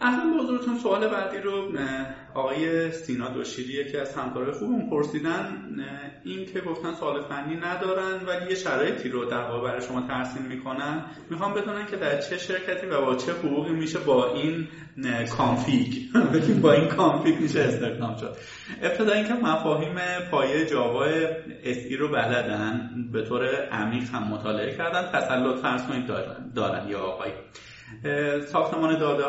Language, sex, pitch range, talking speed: Persian, male, 120-165 Hz, 150 wpm